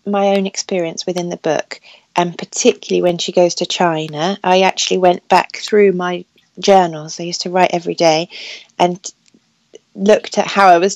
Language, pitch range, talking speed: English, 175-195 Hz, 175 wpm